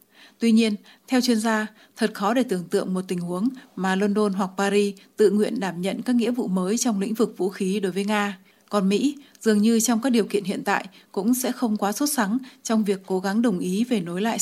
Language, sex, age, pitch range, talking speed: Vietnamese, female, 20-39, 195-230 Hz, 240 wpm